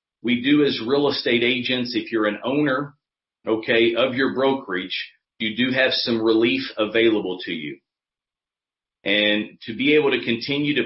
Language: English